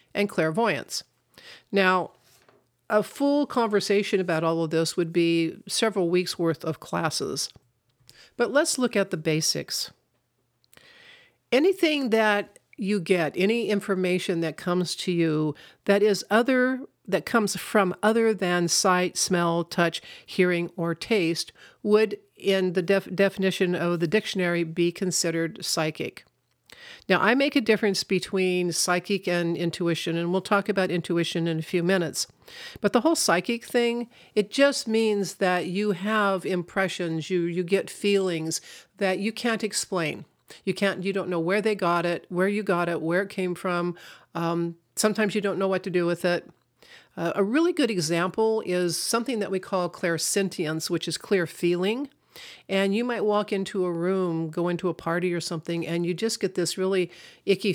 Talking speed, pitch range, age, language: 165 wpm, 170-205 Hz, 50-69, English